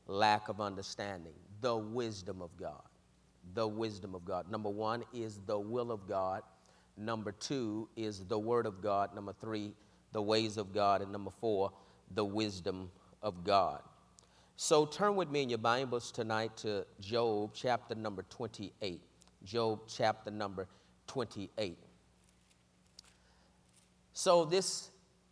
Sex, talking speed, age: male, 135 wpm, 40-59